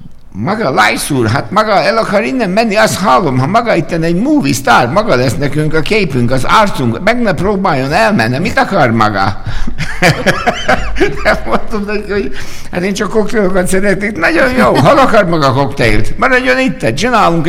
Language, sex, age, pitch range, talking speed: Hungarian, male, 60-79, 105-165 Hz, 170 wpm